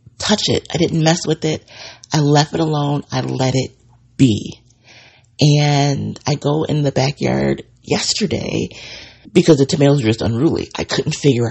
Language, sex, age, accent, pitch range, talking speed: English, female, 30-49, American, 115-145 Hz, 160 wpm